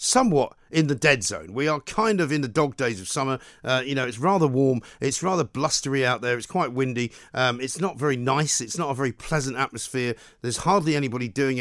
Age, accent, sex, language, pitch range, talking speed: 50-69, British, male, English, 125-160 Hz, 260 wpm